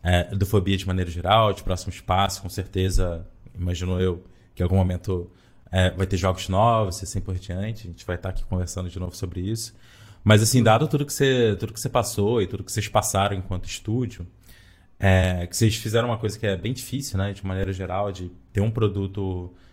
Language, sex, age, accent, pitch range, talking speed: Portuguese, male, 20-39, Brazilian, 95-110 Hz, 215 wpm